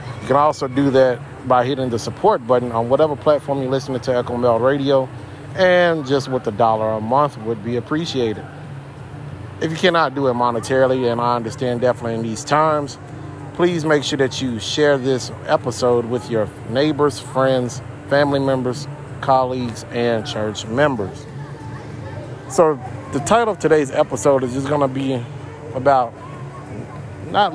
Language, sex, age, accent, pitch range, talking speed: English, male, 30-49, American, 120-145 Hz, 160 wpm